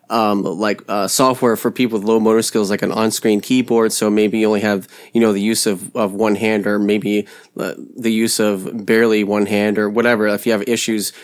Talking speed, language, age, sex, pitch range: 230 wpm, English, 20-39, male, 105-115 Hz